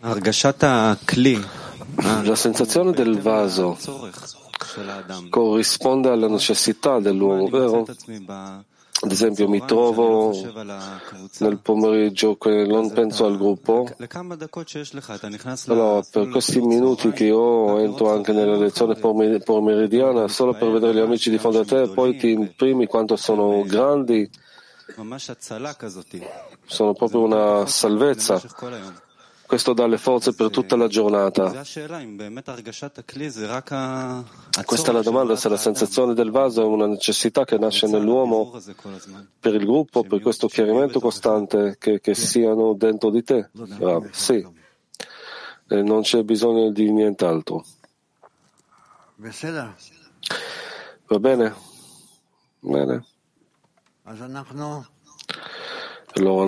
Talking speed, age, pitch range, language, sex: 105 wpm, 40-59, 105-125 Hz, Italian, male